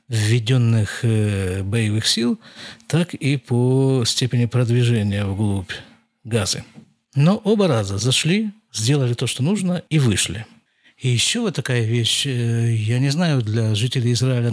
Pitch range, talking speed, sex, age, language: 120-165 Hz, 130 wpm, male, 50-69, Russian